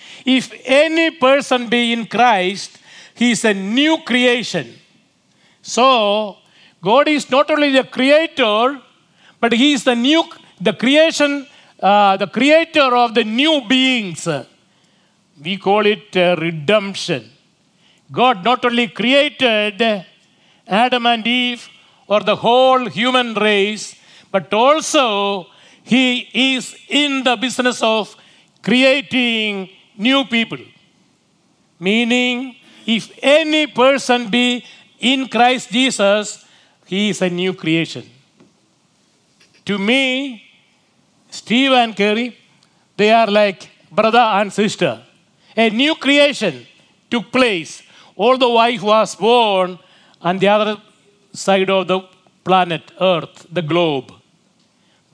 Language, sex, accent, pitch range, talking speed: English, male, Indian, 195-255 Hz, 115 wpm